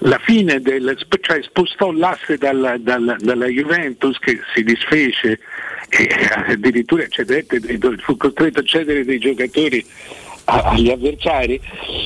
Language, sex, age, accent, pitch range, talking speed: Italian, male, 60-79, native, 130-165 Hz, 120 wpm